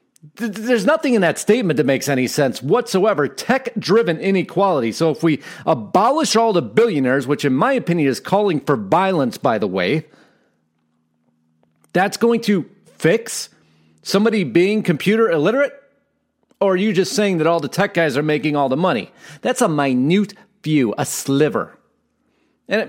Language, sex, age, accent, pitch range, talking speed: English, male, 40-59, American, 145-215 Hz, 155 wpm